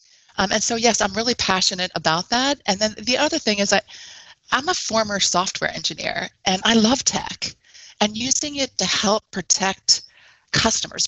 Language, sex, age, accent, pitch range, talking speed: English, female, 30-49, American, 170-210 Hz, 175 wpm